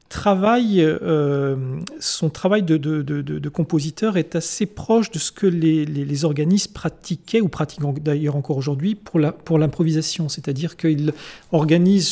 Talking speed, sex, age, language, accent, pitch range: 160 wpm, male, 40-59, French, French, 145-175 Hz